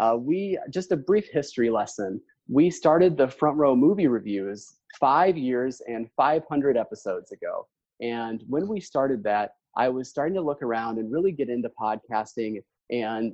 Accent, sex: American, male